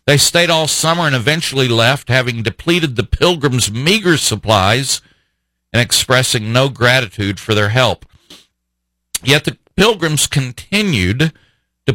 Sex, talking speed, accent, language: male, 125 wpm, American, English